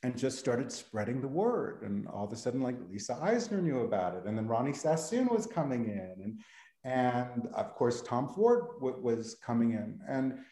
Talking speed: 195 wpm